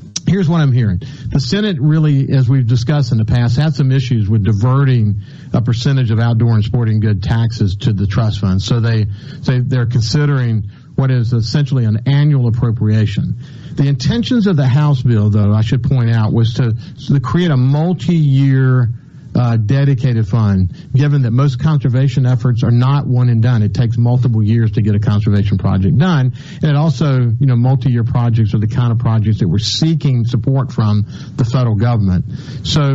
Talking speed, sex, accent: 190 wpm, male, American